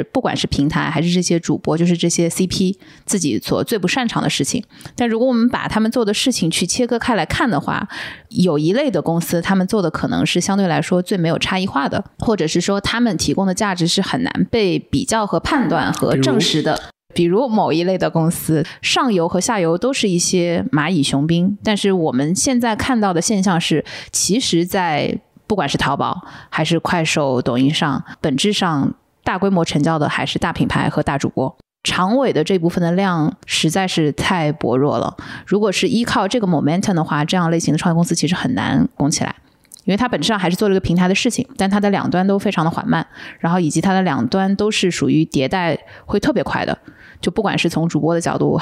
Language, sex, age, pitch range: Chinese, female, 20-39, 160-200 Hz